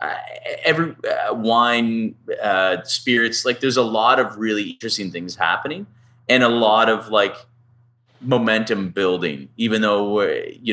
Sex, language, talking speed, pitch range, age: male, English, 145 wpm, 100-120 Hz, 30-49